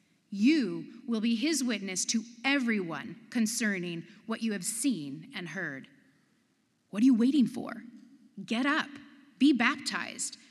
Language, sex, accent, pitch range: English, female, American, 215-275 Hz